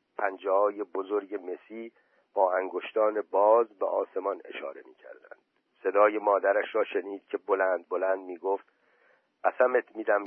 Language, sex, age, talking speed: Persian, male, 50-69, 135 wpm